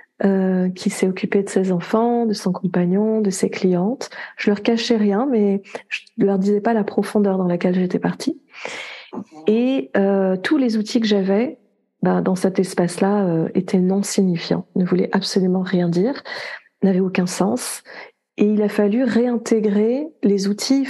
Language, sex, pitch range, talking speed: French, female, 190-230 Hz, 170 wpm